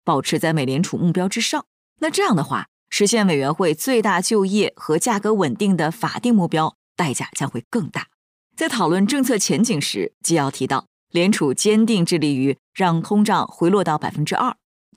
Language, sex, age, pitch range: Chinese, female, 20-39, 150-210 Hz